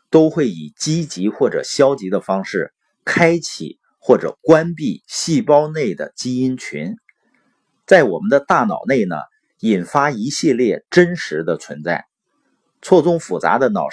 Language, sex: Chinese, male